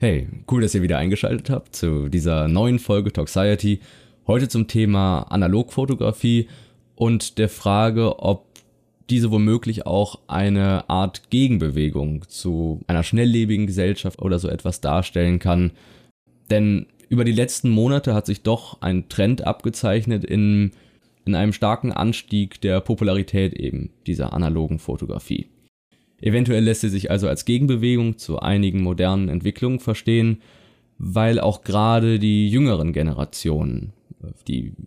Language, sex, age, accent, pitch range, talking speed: German, male, 20-39, German, 90-115 Hz, 130 wpm